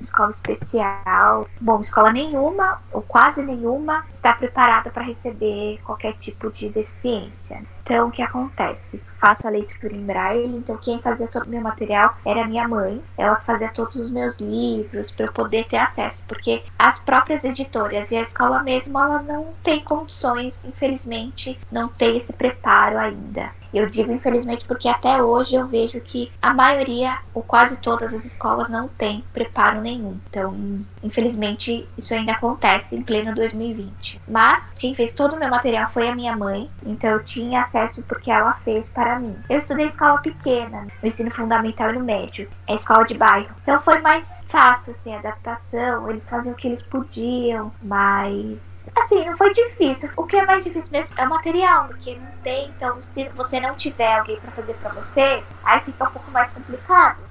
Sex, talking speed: female, 185 wpm